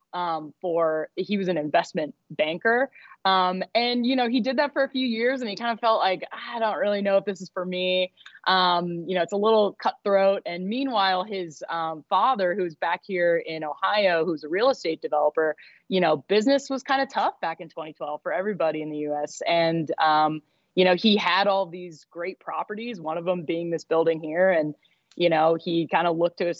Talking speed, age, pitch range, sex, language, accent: 215 wpm, 20-39, 165-200 Hz, female, English, American